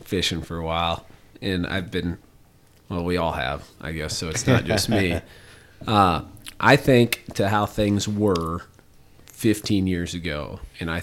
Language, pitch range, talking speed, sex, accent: English, 90-105 Hz, 165 wpm, male, American